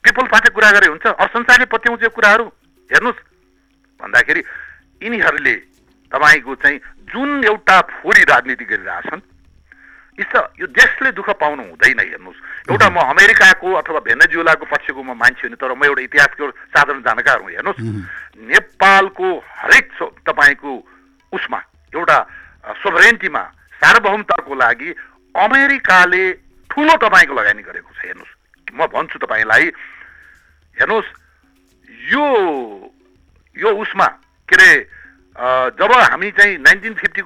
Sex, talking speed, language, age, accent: male, 100 wpm, English, 60-79, Indian